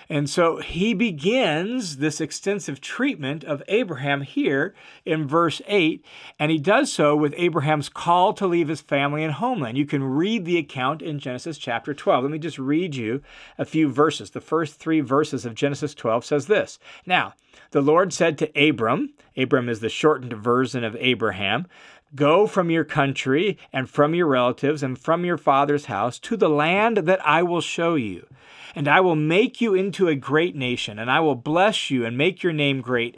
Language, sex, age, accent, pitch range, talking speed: English, male, 40-59, American, 135-185 Hz, 190 wpm